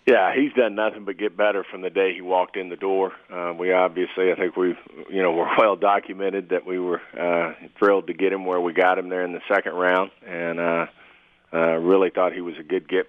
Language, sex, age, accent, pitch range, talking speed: English, male, 40-59, American, 85-95 Hz, 245 wpm